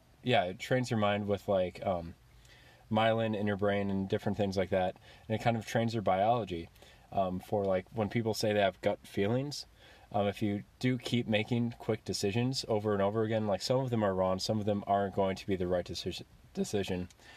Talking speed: 215 wpm